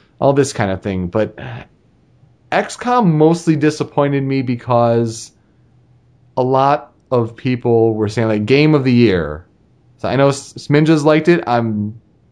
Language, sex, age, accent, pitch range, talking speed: English, male, 30-49, American, 120-165 Hz, 140 wpm